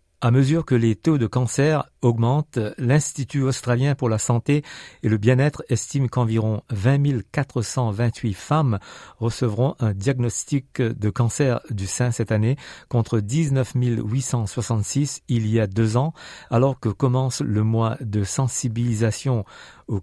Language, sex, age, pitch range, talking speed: French, male, 50-69, 110-135 Hz, 140 wpm